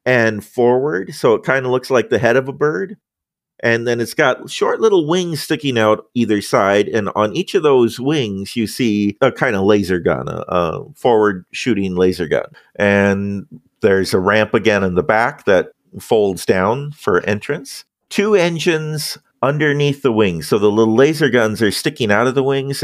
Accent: American